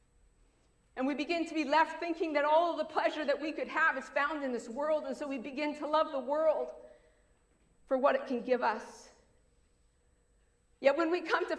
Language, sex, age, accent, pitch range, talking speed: English, female, 40-59, American, 265-330 Hz, 200 wpm